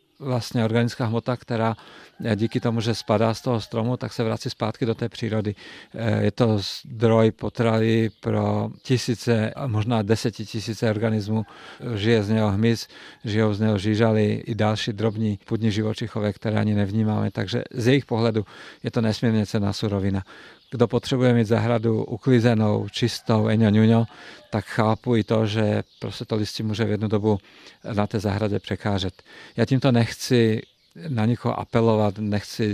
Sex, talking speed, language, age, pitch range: male, 150 wpm, Czech, 50-69, 105-115 Hz